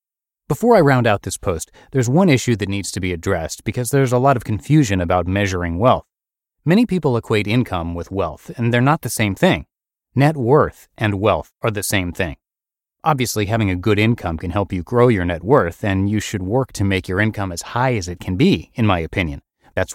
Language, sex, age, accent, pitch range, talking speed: English, male, 30-49, American, 95-130 Hz, 220 wpm